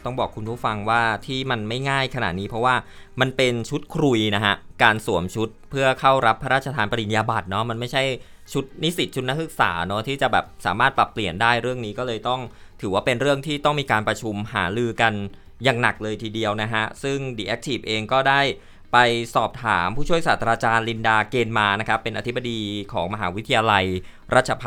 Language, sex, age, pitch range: Thai, male, 20-39, 105-130 Hz